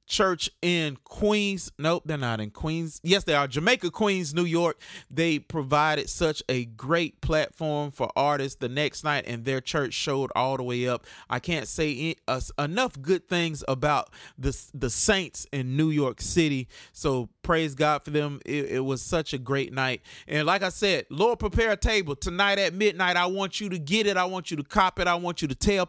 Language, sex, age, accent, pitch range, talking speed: English, male, 30-49, American, 140-180 Hz, 205 wpm